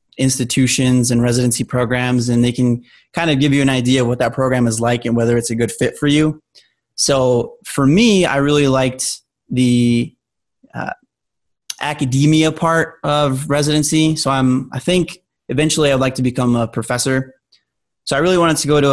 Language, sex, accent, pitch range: English, male, American, 125-140 Hz